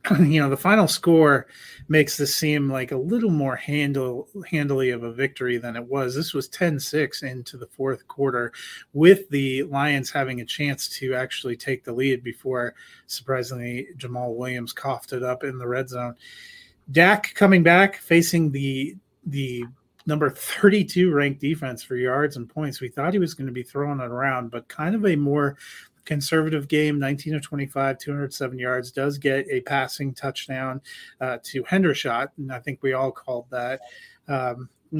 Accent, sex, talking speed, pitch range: American, male, 170 wpm, 130-150 Hz